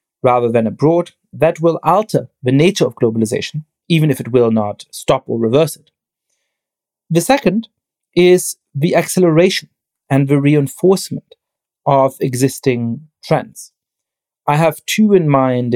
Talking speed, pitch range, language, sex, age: 135 wpm, 125-165 Hz, English, male, 40-59